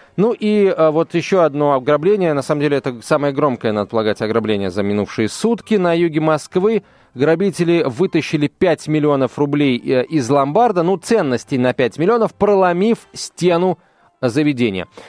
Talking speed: 145 wpm